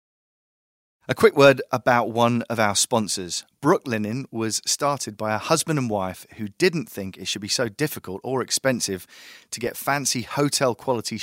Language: English